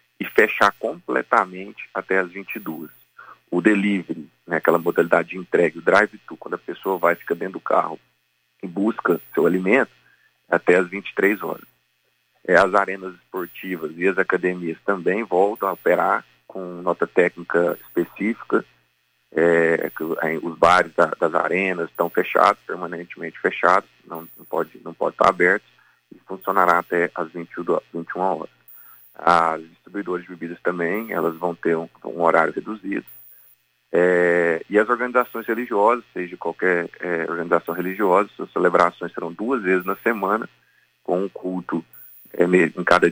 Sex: male